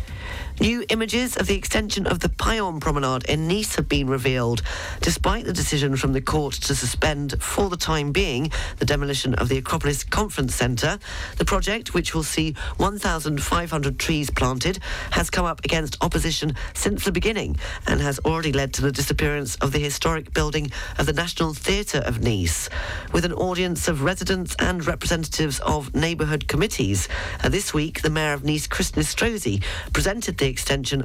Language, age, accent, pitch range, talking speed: English, 40-59, British, 130-165 Hz, 170 wpm